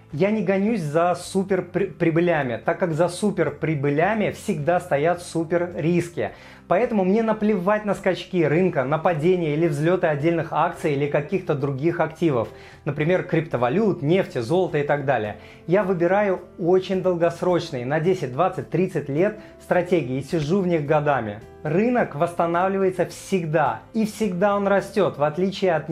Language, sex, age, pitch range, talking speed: Russian, male, 30-49, 155-185 Hz, 135 wpm